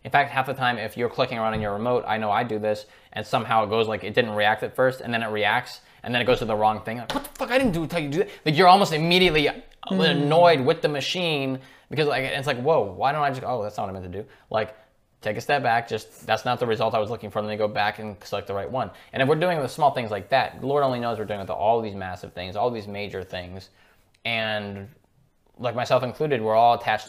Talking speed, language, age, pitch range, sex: 290 wpm, English, 20-39, 105-130 Hz, male